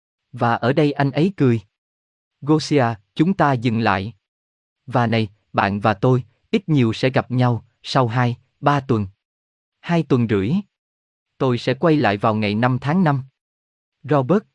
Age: 20-39